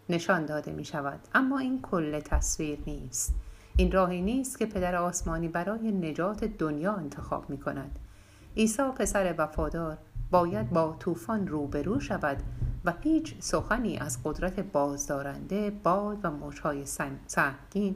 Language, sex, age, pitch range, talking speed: Persian, female, 60-79, 145-195 Hz, 130 wpm